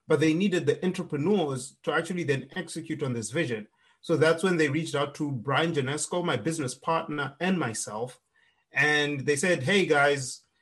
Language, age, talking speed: English, 30-49, 175 wpm